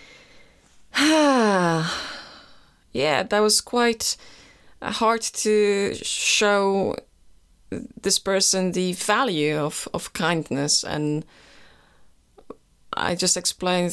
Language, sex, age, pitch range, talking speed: English, female, 30-49, 150-190 Hz, 80 wpm